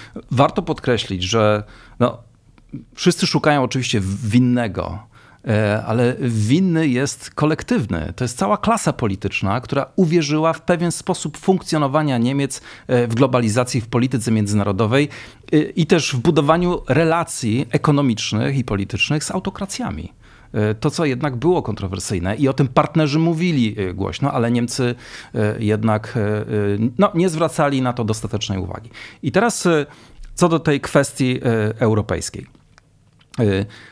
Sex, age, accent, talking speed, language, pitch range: male, 40-59, native, 115 wpm, Polish, 105-150 Hz